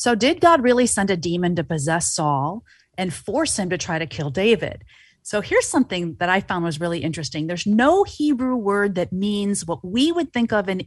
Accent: American